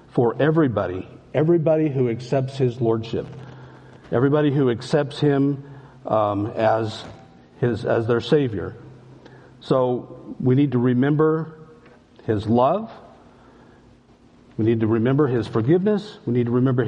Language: English